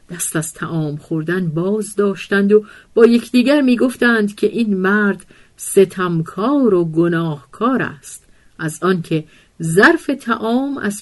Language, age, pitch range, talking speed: Persian, 50-69, 160-215 Hz, 120 wpm